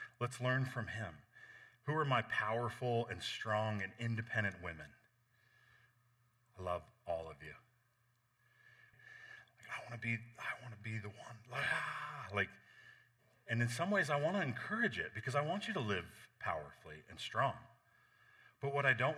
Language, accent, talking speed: English, American, 170 wpm